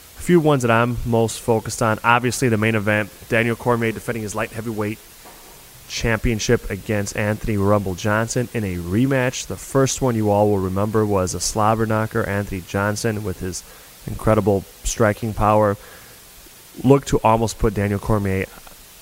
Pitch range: 95-115 Hz